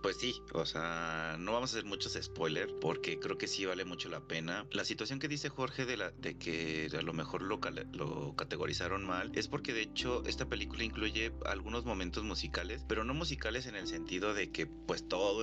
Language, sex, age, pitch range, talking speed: Spanish, male, 30-49, 80-100 Hz, 210 wpm